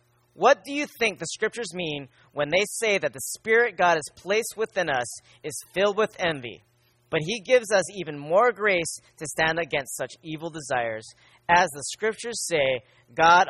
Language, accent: English, American